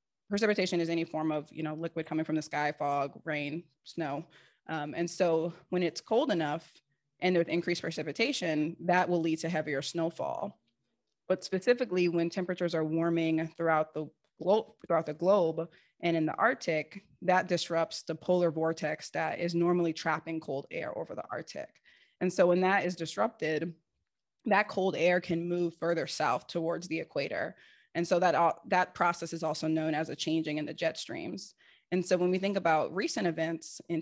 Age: 20-39